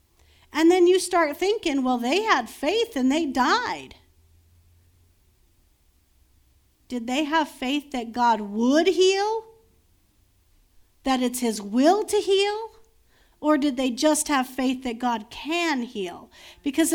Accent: American